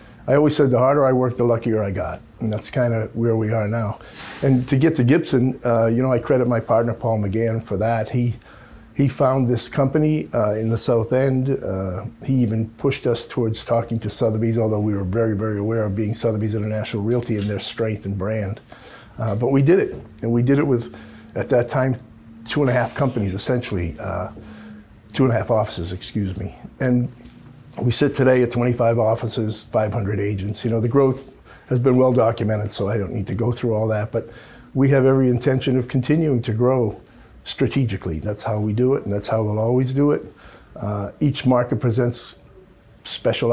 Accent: American